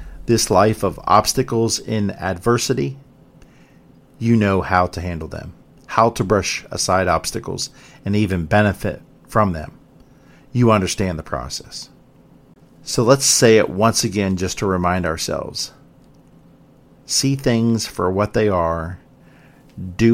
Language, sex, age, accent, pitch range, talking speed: English, male, 50-69, American, 95-115 Hz, 130 wpm